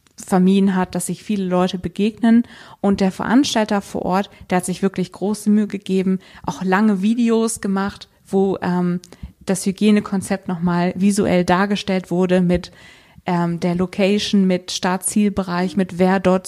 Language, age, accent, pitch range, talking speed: German, 20-39, German, 180-205 Hz, 145 wpm